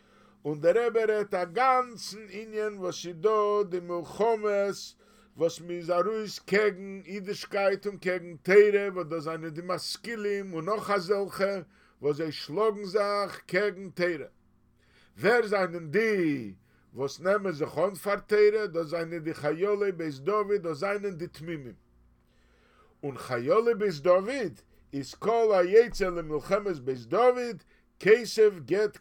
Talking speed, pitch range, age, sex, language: 120 wpm, 145-210 Hz, 50-69, male, English